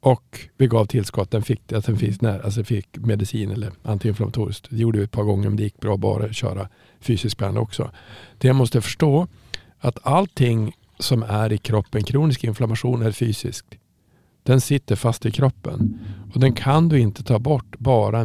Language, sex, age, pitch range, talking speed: Swedish, male, 50-69, 105-130 Hz, 180 wpm